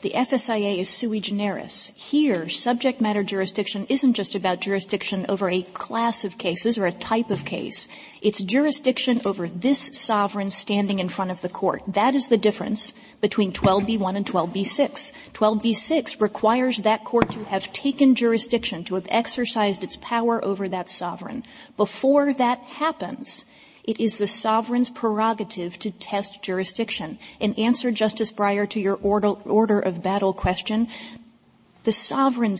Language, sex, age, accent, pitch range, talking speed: English, female, 30-49, American, 200-245 Hz, 150 wpm